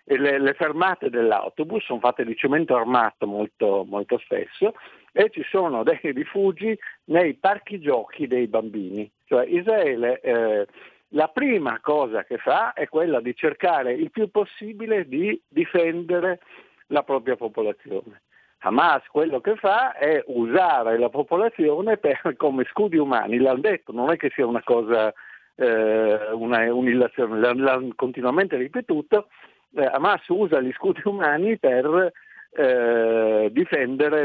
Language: Italian